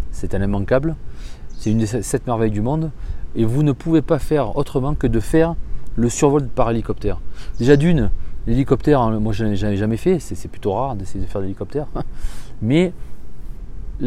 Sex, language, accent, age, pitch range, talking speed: male, English, French, 30-49, 110-145 Hz, 180 wpm